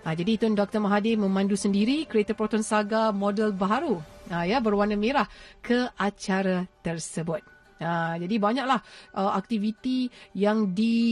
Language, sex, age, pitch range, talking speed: Malay, female, 40-59, 190-215 Hz, 140 wpm